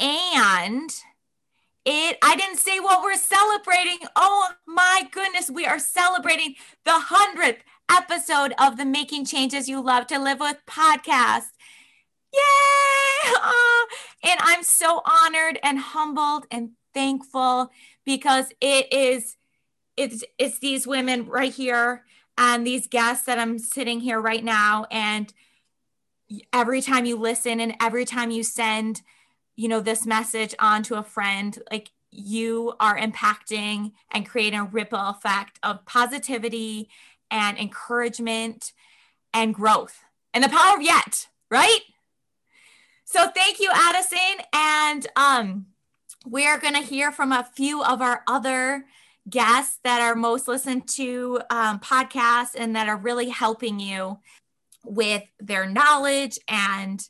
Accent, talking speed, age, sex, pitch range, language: American, 135 wpm, 20-39, female, 225-295 Hz, English